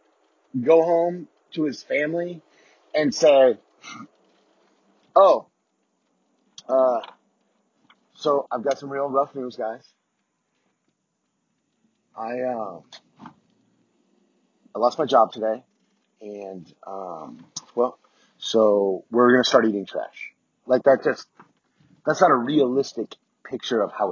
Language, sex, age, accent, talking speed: English, male, 30-49, American, 105 wpm